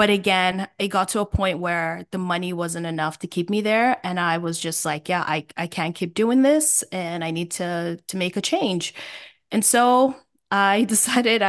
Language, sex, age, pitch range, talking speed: English, female, 20-39, 175-205 Hz, 210 wpm